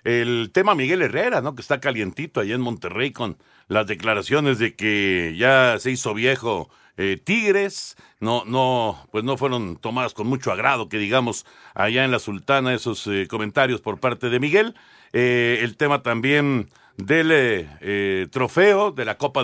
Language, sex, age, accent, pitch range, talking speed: Spanish, male, 50-69, Mexican, 120-185 Hz, 170 wpm